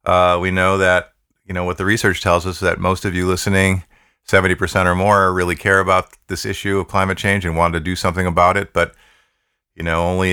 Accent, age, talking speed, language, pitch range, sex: American, 40-59, 225 wpm, English, 80-95 Hz, male